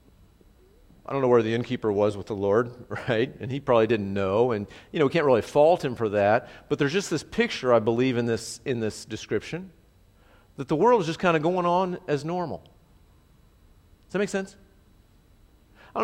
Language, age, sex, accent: English, 50-69, male, American